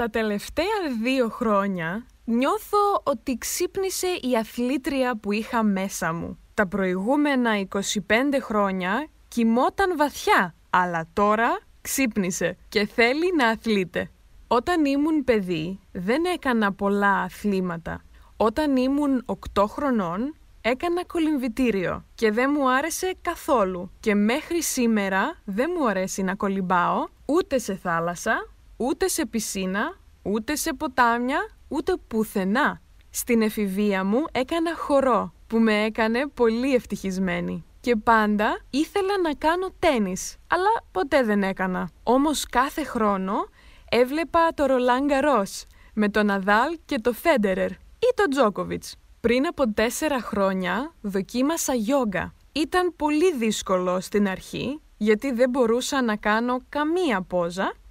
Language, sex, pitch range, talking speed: Greek, female, 200-295 Hz, 120 wpm